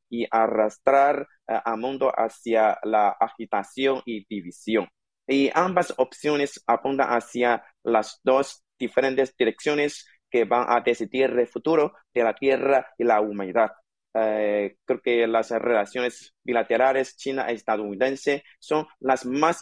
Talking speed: 125 wpm